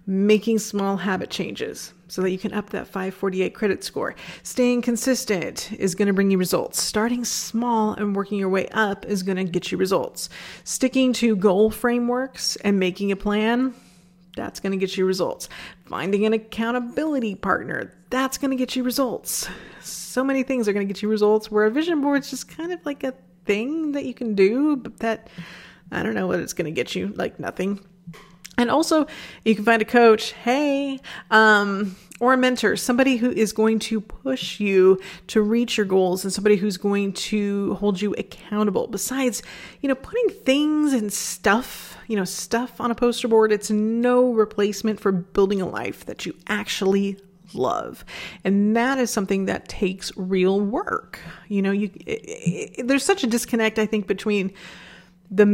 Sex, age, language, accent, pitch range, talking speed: female, 30-49, English, American, 195-245 Hz, 180 wpm